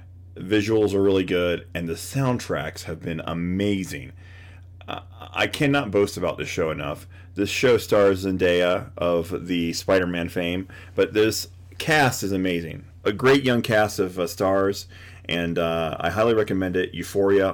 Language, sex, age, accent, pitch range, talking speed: English, male, 30-49, American, 90-110 Hz, 155 wpm